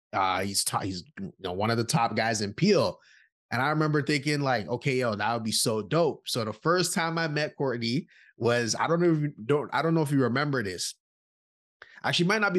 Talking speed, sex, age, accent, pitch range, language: 245 wpm, male, 20-39, American, 120-165 Hz, English